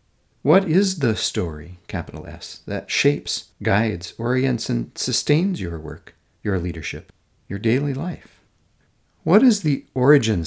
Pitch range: 90-125 Hz